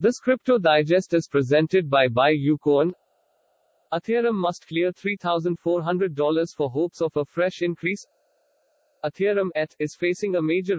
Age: 50-69